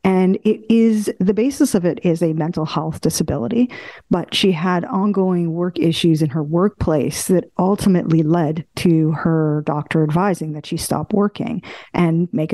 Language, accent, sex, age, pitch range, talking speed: English, American, female, 40-59, 160-195 Hz, 165 wpm